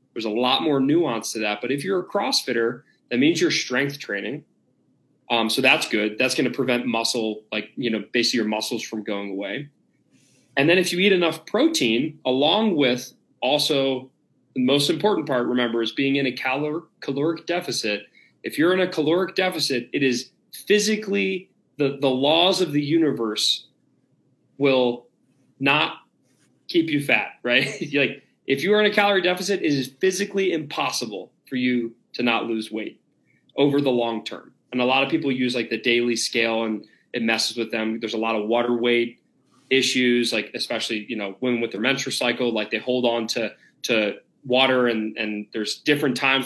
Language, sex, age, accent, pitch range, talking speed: English, male, 30-49, American, 120-155 Hz, 185 wpm